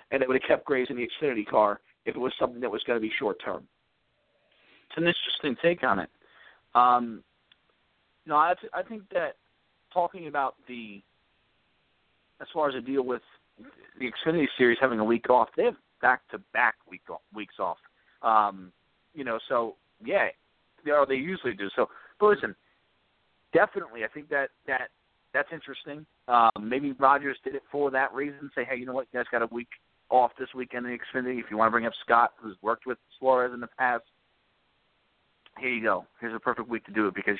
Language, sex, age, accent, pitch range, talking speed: English, male, 40-59, American, 115-150 Hz, 205 wpm